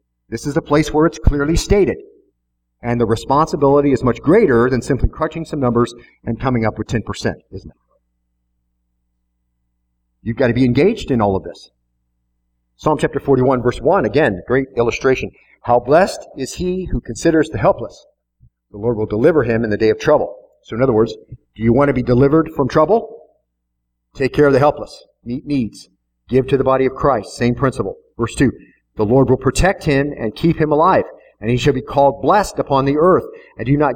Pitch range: 100-145 Hz